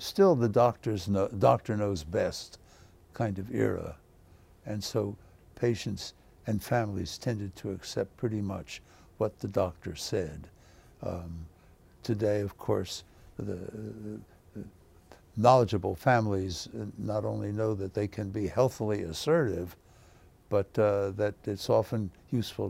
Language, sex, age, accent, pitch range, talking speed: English, male, 60-79, American, 95-120 Hz, 125 wpm